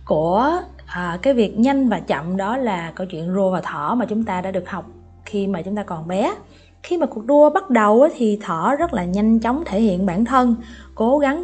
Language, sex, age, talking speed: Vietnamese, female, 20-39, 225 wpm